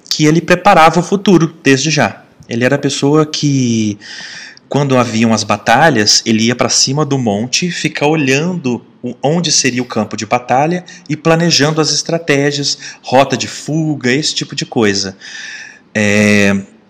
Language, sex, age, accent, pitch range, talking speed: Portuguese, male, 30-49, Brazilian, 110-145 Hz, 145 wpm